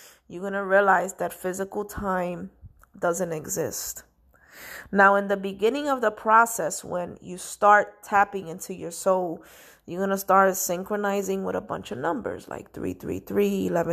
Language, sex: English, female